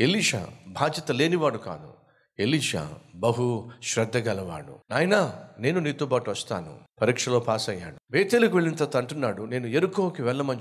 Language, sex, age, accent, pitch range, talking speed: Telugu, male, 50-69, native, 110-155 Hz, 120 wpm